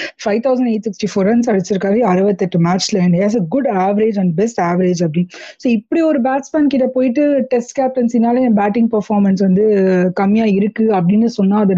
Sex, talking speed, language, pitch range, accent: female, 135 wpm, Tamil, 195-240 Hz, native